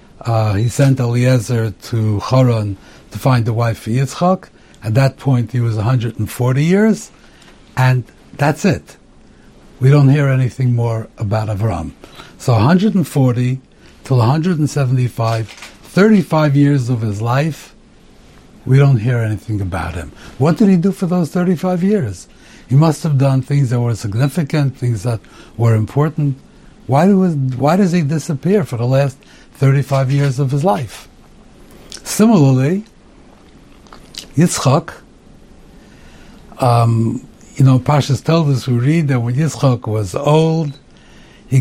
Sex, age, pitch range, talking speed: male, 60-79, 115-145 Hz, 135 wpm